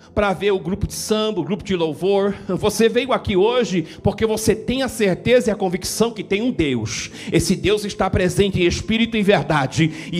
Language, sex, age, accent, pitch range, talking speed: Portuguese, male, 50-69, Brazilian, 200-330 Hz, 210 wpm